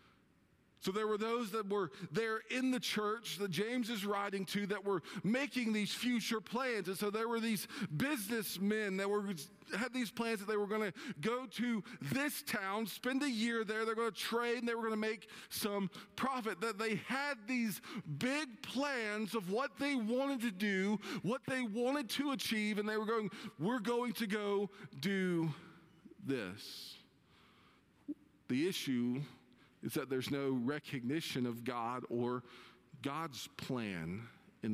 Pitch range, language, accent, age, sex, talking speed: 185-230 Hz, English, American, 40-59, male, 170 wpm